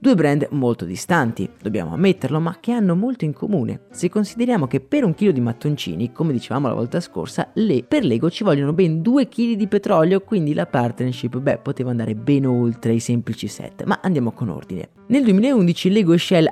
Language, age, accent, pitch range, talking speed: Italian, 20-39, native, 125-185 Hz, 200 wpm